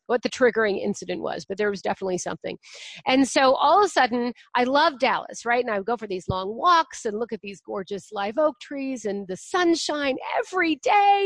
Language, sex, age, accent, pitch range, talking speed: English, female, 40-59, American, 220-310 Hz, 220 wpm